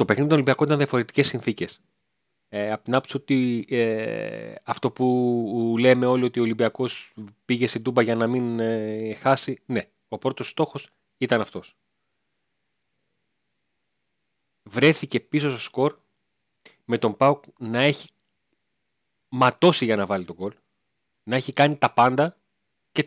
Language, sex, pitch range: Greek, male, 115-155 Hz